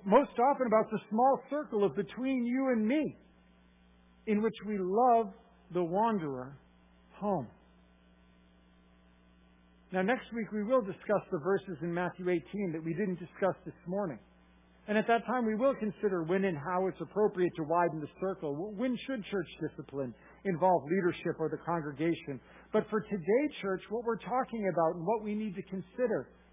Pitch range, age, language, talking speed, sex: 140-210 Hz, 50-69, English, 165 wpm, male